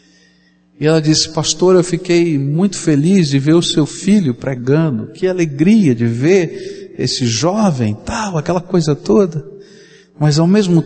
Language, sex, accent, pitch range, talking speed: Portuguese, male, Brazilian, 155-215 Hz, 150 wpm